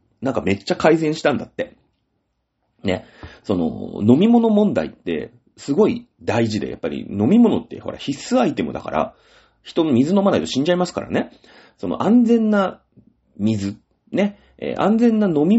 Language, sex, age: Japanese, male, 30-49